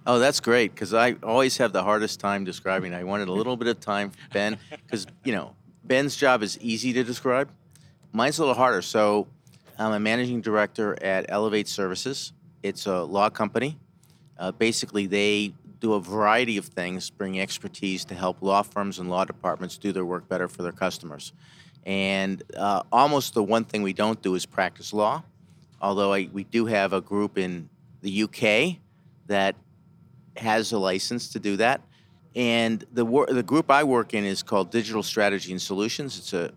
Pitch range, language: 95-120 Hz, English